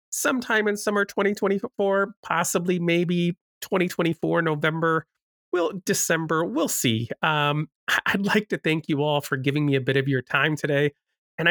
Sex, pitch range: male, 135-175 Hz